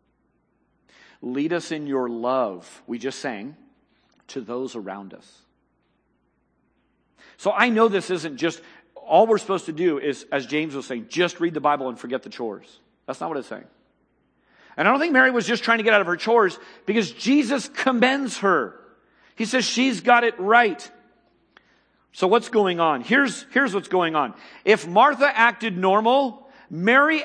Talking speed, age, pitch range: 175 wpm, 50-69, 165-245 Hz